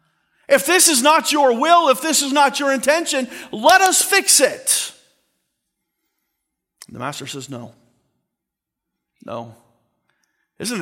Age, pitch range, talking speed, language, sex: 40-59, 140-225 Hz, 130 wpm, English, male